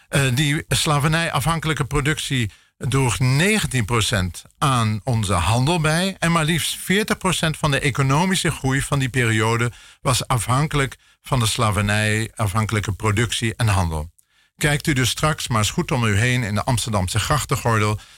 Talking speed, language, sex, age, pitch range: 140 wpm, Dutch, male, 50-69, 105-145 Hz